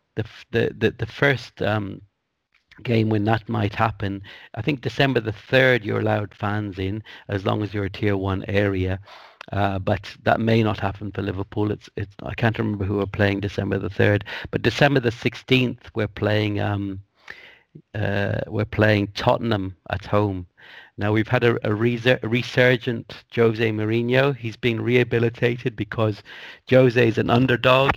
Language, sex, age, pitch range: English, male, 60-79, 100-120 Hz